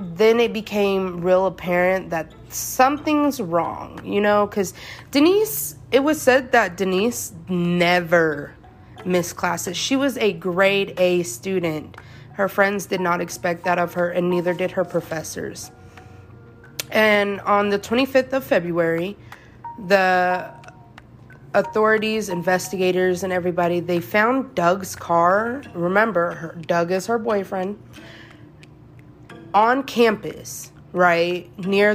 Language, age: English, 30-49